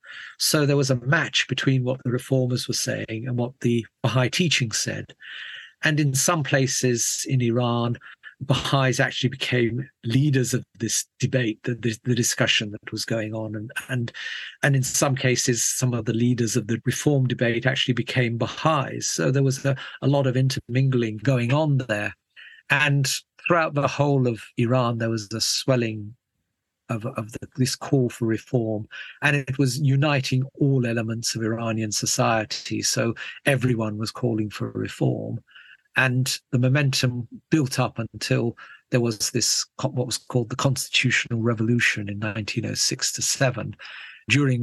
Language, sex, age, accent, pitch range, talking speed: English, male, 50-69, British, 115-130 Hz, 150 wpm